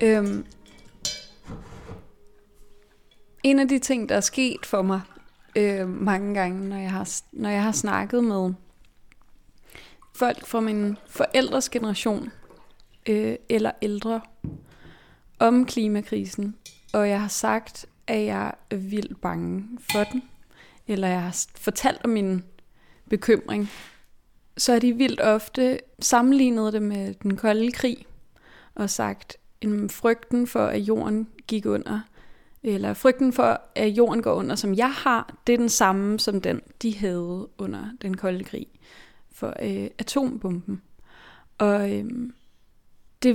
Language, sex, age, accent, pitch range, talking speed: Danish, female, 20-39, native, 205-245 Hz, 130 wpm